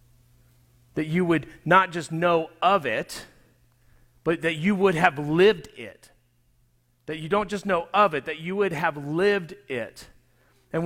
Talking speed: 160 wpm